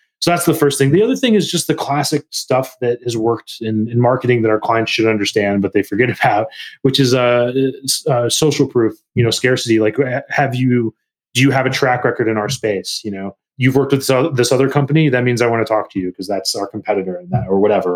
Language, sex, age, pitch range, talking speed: English, male, 30-49, 110-140 Hz, 245 wpm